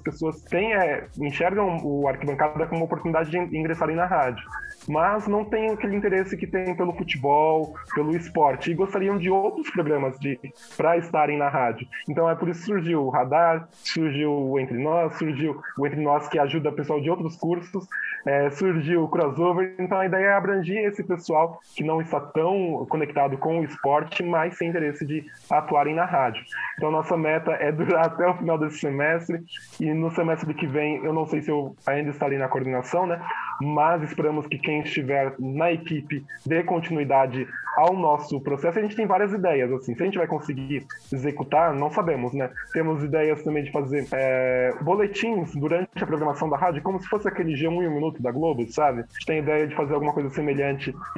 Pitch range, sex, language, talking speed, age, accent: 145-175 Hz, male, Portuguese, 195 wpm, 20-39, Brazilian